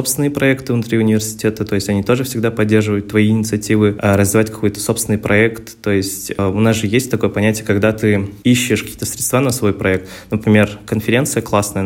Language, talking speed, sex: Russian, 175 wpm, male